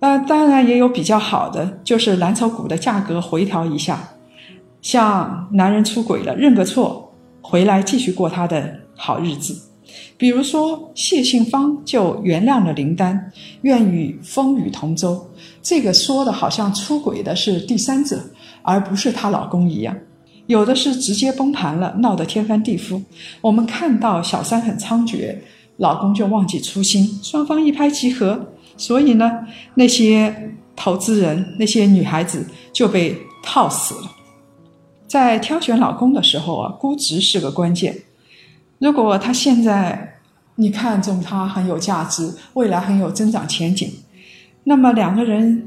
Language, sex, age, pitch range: Chinese, female, 50-69, 185-250 Hz